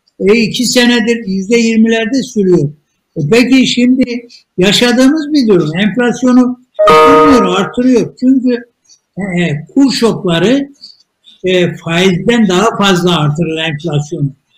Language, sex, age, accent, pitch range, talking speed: Turkish, male, 60-79, native, 185-240 Hz, 100 wpm